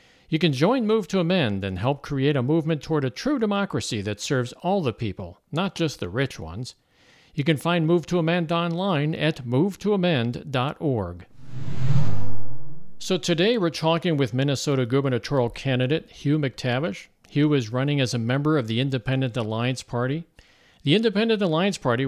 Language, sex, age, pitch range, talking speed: English, male, 50-69, 125-165 Hz, 160 wpm